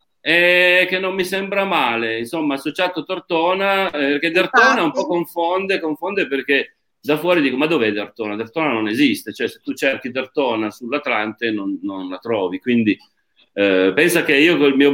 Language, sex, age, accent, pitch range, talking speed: Italian, male, 40-59, native, 130-180 Hz, 175 wpm